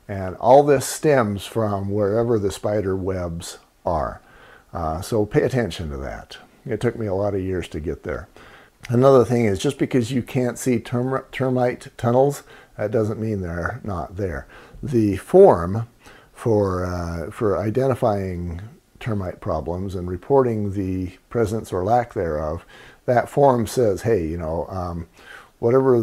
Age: 50-69